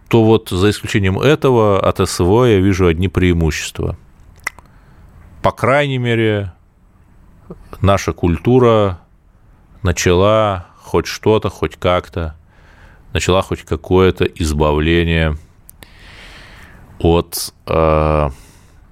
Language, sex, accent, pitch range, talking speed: Russian, male, native, 85-110 Hz, 80 wpm